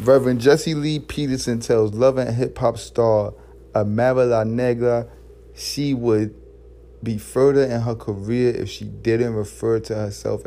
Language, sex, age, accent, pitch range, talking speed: English, male, 30-49, American, 105-120 Hz, 150 wpm